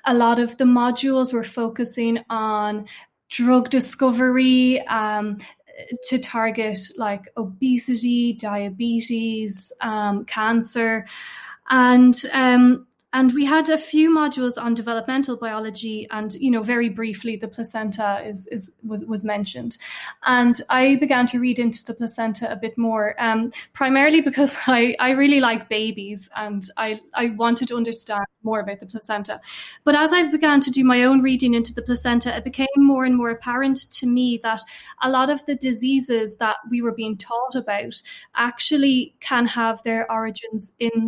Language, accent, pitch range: English, Irish, 220-250 Hz